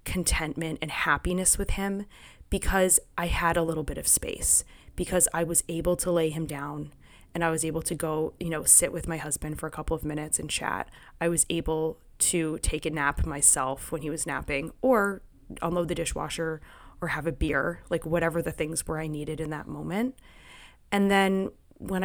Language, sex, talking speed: English, female, 200 wpm